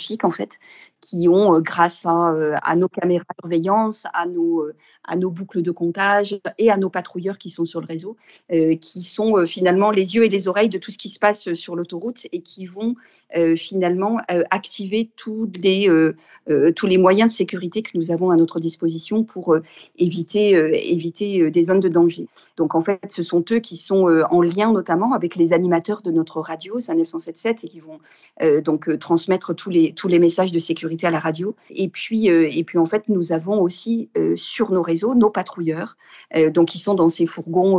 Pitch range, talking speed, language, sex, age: 165-205 Hz, 200 wpm, French, female, 40-59